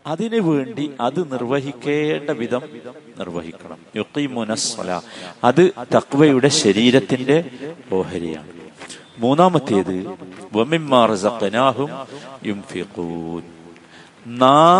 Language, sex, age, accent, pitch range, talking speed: Malayalam, male, 50-69, native, 110-170 Hz, 40 wpm